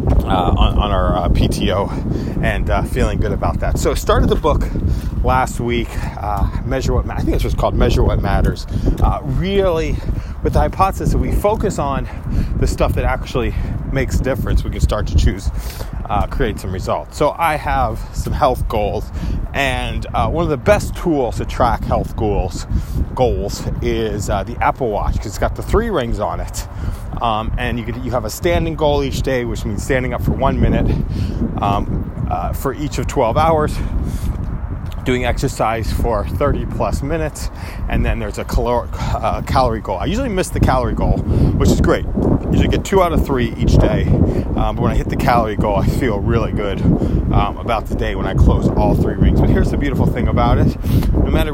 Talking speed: 200 wpm